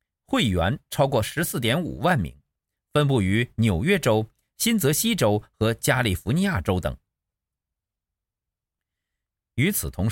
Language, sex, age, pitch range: Chinese, male, 50-69, 90-150 Hz